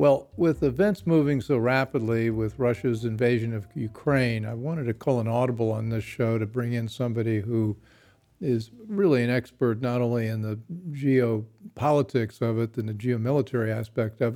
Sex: male